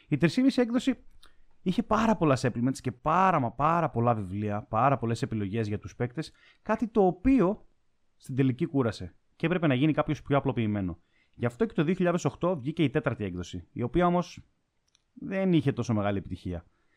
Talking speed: 175 wpm